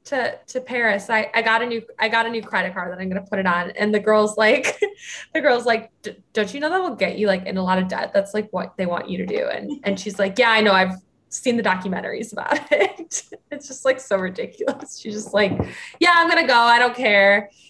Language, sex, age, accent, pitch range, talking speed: English, female, 20-39, American, 185-230 Hz, 260 wpm